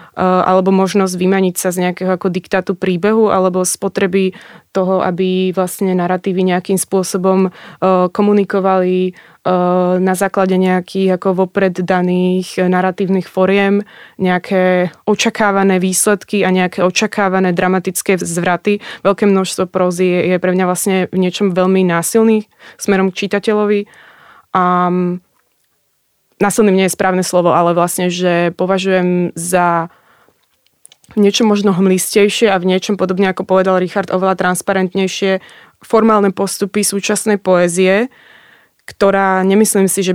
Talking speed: 120 wpm